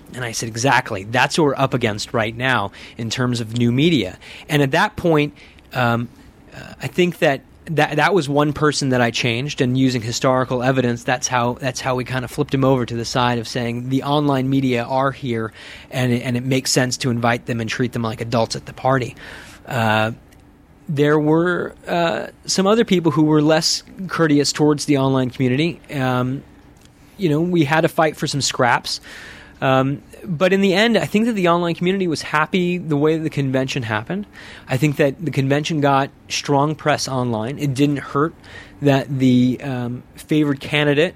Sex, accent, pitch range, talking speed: male, American, 120-150 Hz, 195 wpm